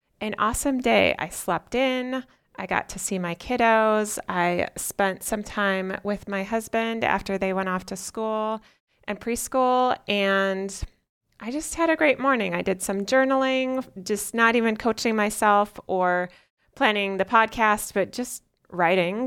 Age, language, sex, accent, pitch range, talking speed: 30-49, English, female, American, 175-220 Hz, 155 wpm